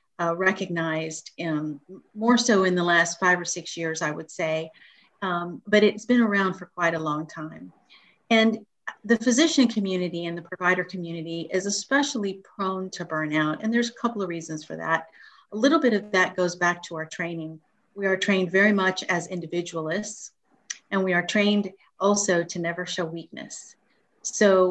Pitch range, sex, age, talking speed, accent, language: 165-205 Hz, female, 50-69, 175 wpm, American, English